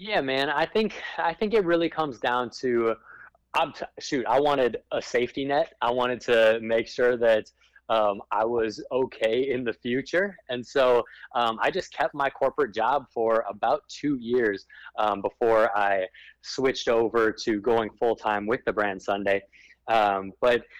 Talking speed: 175 wpm